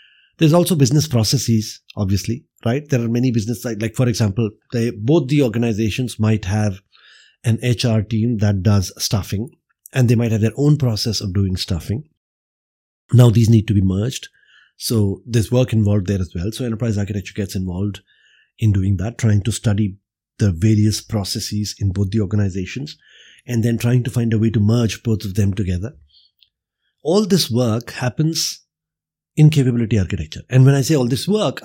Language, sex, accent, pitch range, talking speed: English, male, Indian, 105-130 Hz, 175 wpm